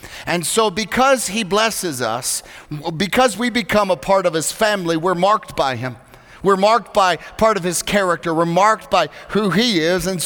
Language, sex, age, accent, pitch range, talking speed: English, male, 40-59, American, 170-210 Hz, 185 wpm